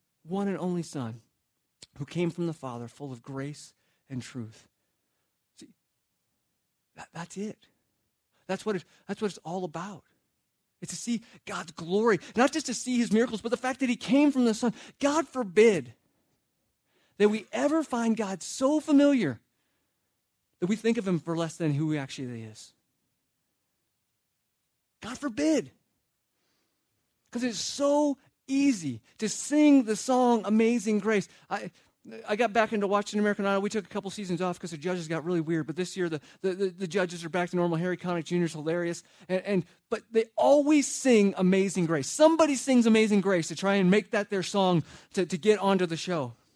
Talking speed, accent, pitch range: 180 wpm, American, 175-245 Hz